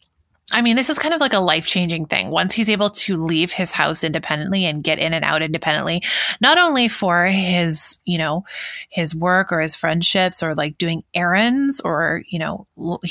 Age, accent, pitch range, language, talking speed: 20-39, American, 170-210 Hz, English, 195 wpm